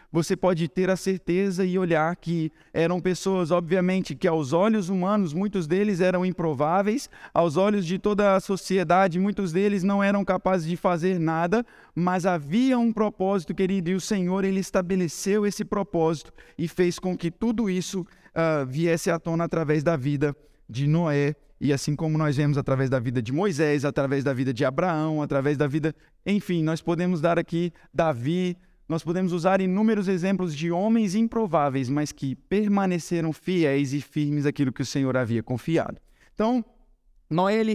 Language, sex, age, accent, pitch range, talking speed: Portuguese, male, 20-39, Brazilian, 160-205 Hz, 170 wpm